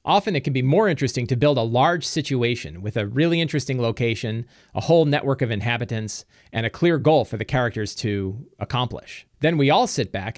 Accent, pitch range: American, 110-150 Hz